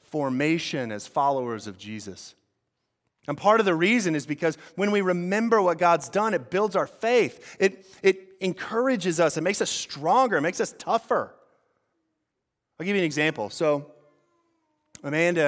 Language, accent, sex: English, American, male